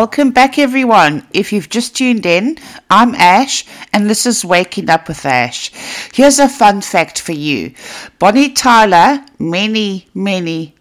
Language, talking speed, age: English, 150 wpm, 60-79